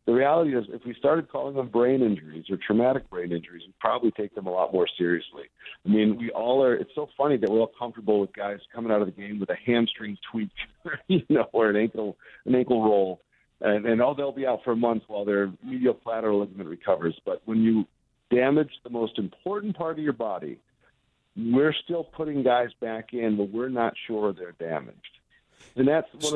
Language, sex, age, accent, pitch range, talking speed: English, male, 50-69, American, 105-125 Hz, 205 wpm